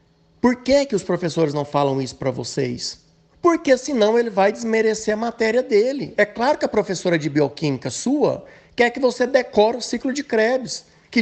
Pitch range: 170-230 Hz